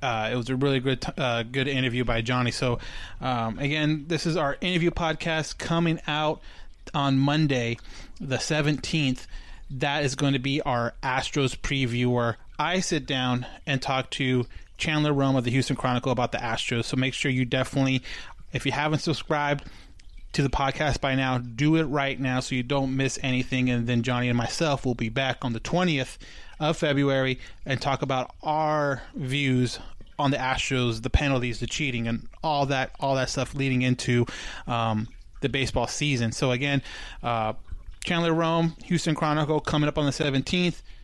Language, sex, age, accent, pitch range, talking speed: English, male, 30-49, American, 125-150 Hz, 175 wpm